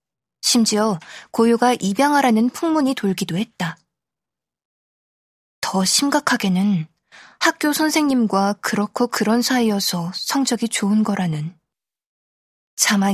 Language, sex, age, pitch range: Korean, female, 20-39, 195-245 Hz